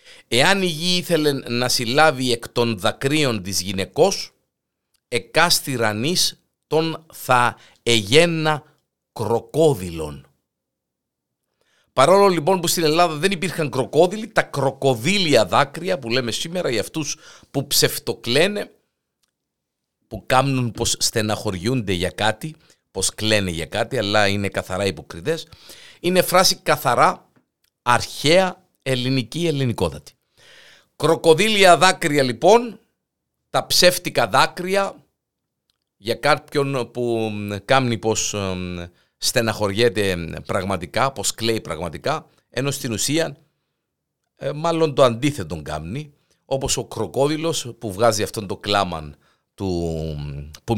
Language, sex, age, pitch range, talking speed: Greek, male, 50-69, 105-155 Hz, 100 wpm